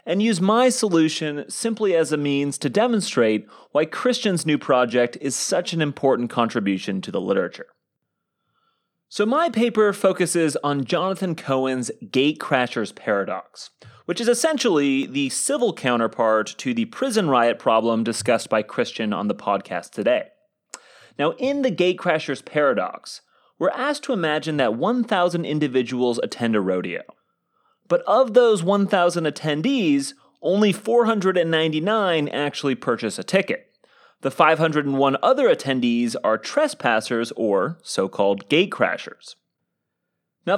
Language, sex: English, male